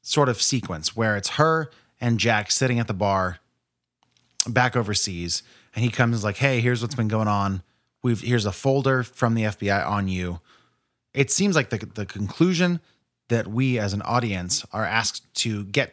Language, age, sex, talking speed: English, 30-49, male, 180 wpm